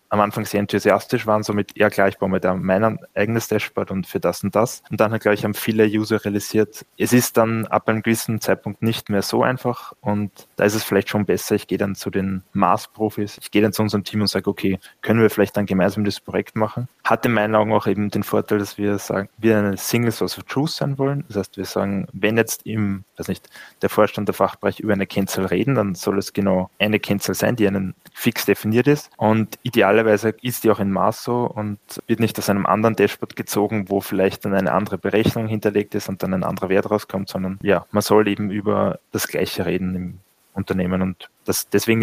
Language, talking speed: German, 235 wpm